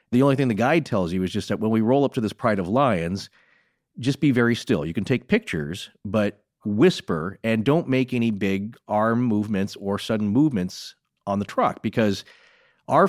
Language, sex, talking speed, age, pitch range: English, male, 200 wpm, 40-59, 110-145 Hz